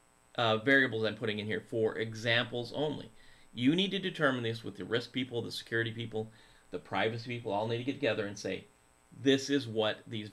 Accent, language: American, English